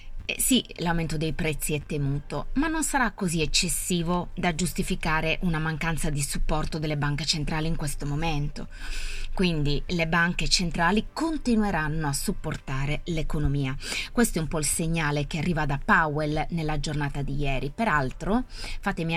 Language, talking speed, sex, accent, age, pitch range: Italian, 145 wpm, female, native, 20-39, 145-185 Hz